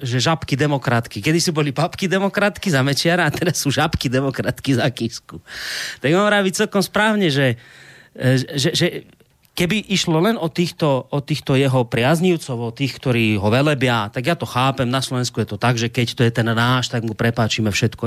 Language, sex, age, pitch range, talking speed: Slovak, male, 30-49, 125-180 Hz, 195 wpm